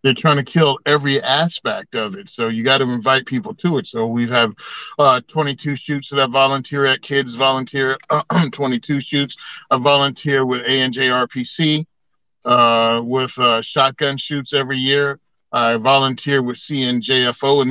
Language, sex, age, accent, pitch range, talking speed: English, male, 40-59, American, 125-145 Hz, 155 wpm